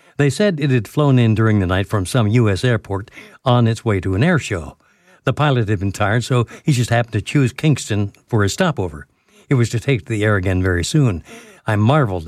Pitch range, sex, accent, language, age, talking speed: 100-140 Hz, male, American, English, 60-79, 230 wpm